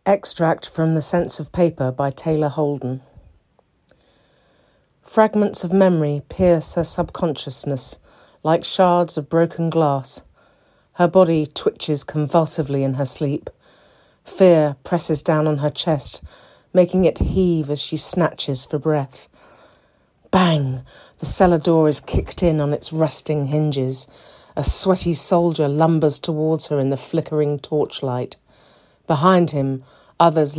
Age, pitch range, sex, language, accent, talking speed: 40-59, 145-170 Hz, female, English, British, 130 wpm